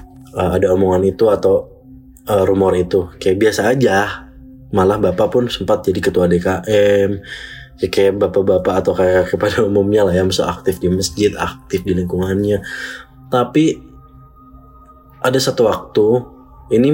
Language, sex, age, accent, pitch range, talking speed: Indonesian, male, 20-39, native, 90-115 Hz, 140 wpm